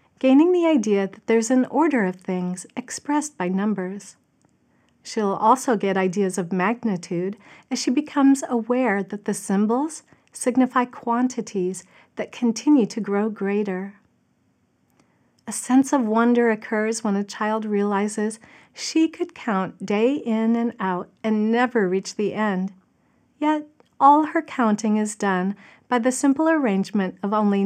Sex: female